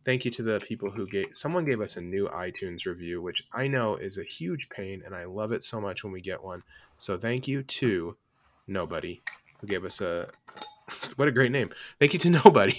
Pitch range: 100-125 Hz